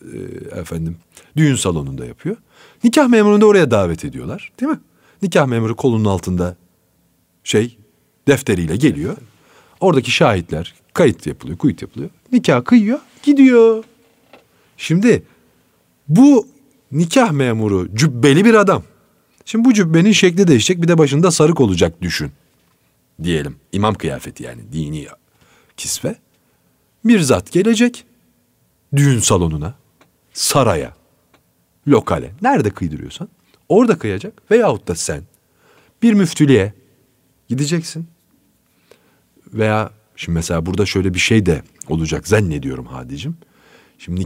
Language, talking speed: Turkish, 110 wpm